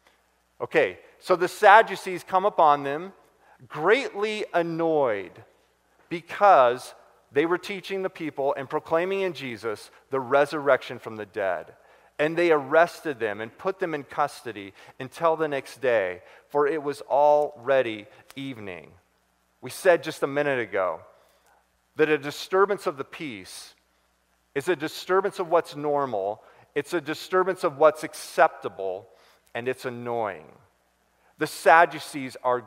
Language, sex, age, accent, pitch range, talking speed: English, male, 40-59, American, 115-160 Hz, 130 wpm